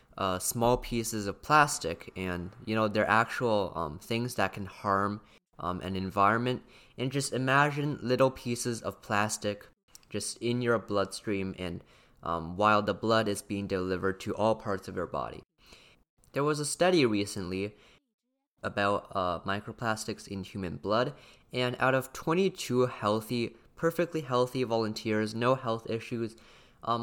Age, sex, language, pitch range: 20-39, male, Chinese, 100-125 Hz